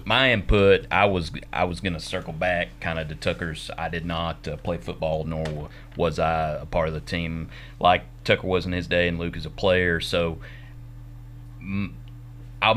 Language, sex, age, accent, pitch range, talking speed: English, male, 30-49, American, 80-95 Hz, 195 wpm